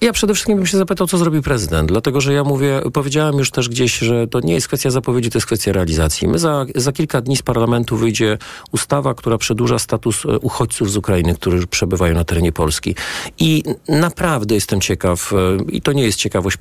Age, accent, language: 40-59, native, Polish